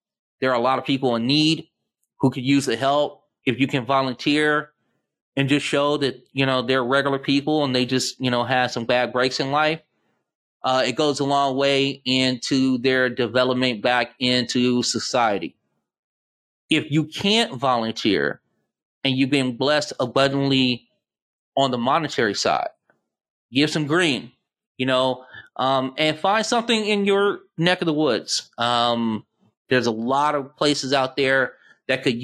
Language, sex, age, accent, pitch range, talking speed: English, male, 30-49, American, 125-145 Hz, 160 wpm